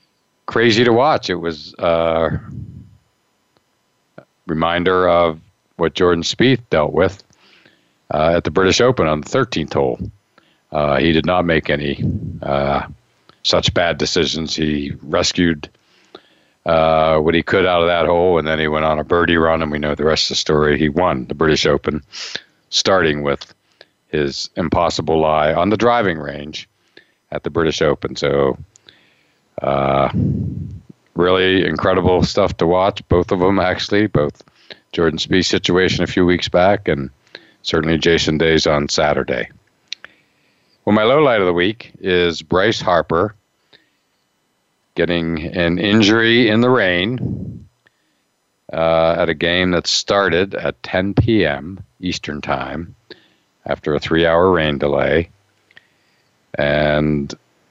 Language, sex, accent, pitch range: English, male, American, 75-95 Hz